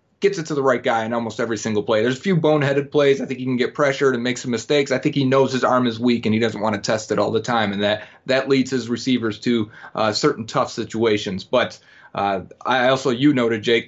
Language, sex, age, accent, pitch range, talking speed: English, male, 30-49, American, 115-135 Hz, 270 wpm